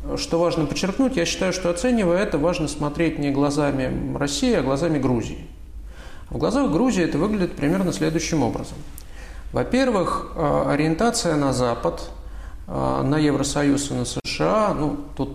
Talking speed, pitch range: 135 wpm, 120-165 Hz